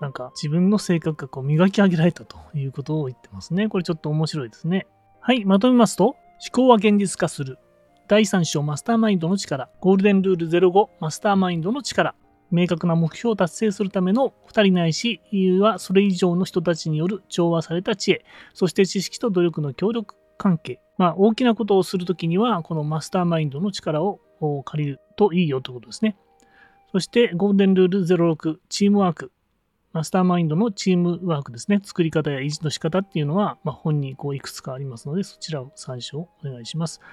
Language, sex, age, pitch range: Japanese, male, 30-49, 155-205 Hz